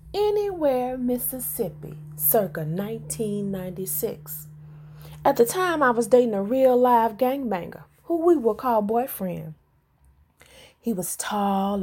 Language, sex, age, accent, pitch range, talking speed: English, female, 30-49, American, 190-265 Hz, 110 wpm